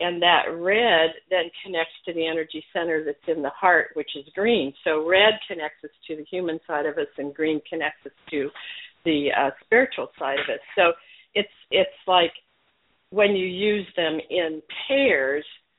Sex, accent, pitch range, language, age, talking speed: female, American, 155-180 Hz, English, 50-69, 180 wpm